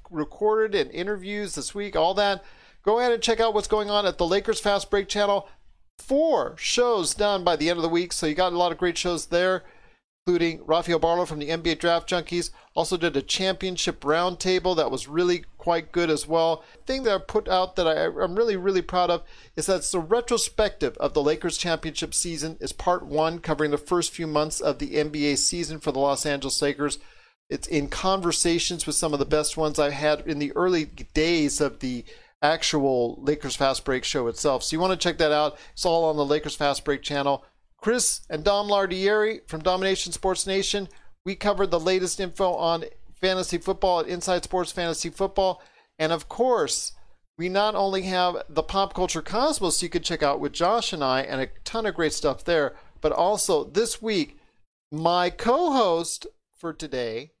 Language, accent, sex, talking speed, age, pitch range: English, American, male, 200 wpm, 40-59, 155-195 Hz